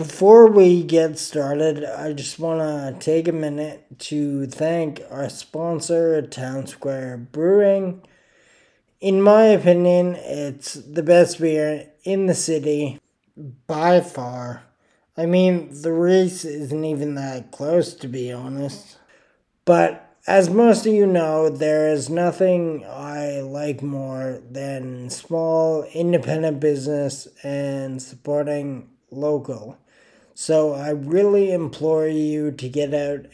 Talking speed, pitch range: 120 wpm, 140-170 Hz